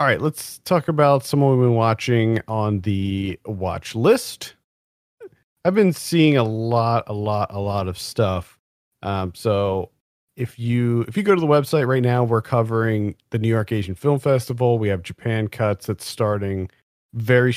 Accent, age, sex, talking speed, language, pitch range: American, 40-59, male, 175 wpm, English, 95-125 Hz